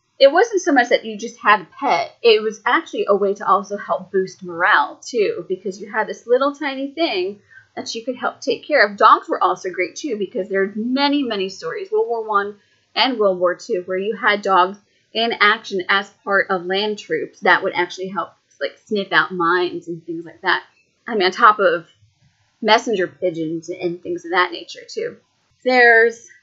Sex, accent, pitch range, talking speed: female, American, 190-270 Hz, 205 wpm